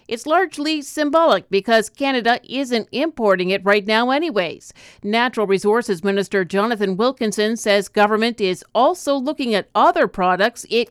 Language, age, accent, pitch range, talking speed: English, 50-69, American, 200-260 Hz, 140 wpm